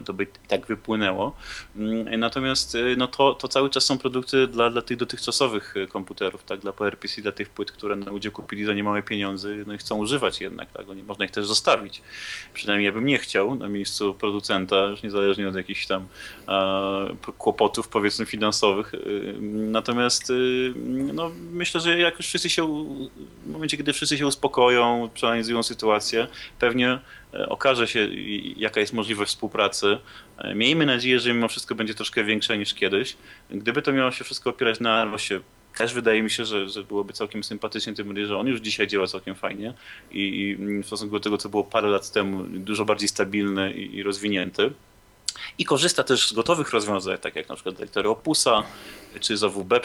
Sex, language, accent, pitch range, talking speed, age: male, Polish, native, 100-125 Hz, 175 wpm, 20-39